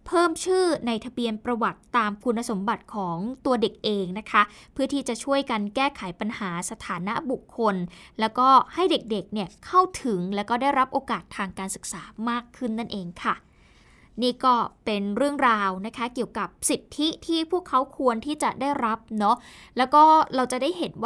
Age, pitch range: 10-29, 205-270 Hz